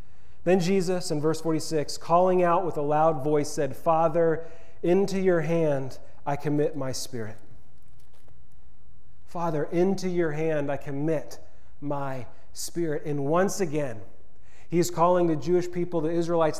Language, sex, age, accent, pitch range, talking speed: English, male, 30-49, American, 150-175 Hz, 140 wpm